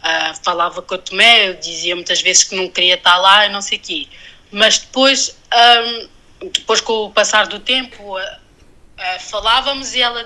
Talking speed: 195 wpm